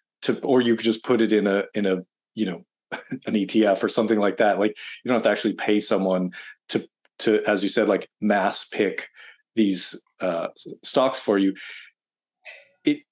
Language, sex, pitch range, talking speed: English, male, 105-120 Hz, 190 wpm